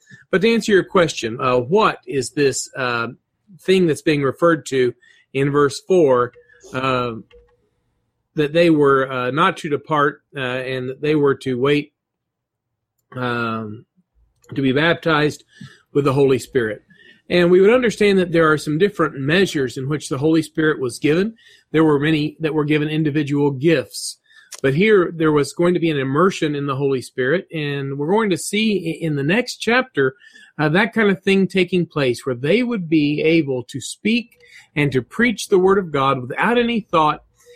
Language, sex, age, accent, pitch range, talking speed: English, male, 40-59, American, 140-185 Hz, 175 wpm